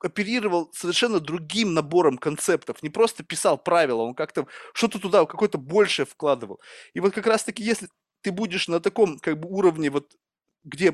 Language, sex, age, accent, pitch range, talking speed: Russian, male, 20-39, native, 150-200 Hz, 165 wpm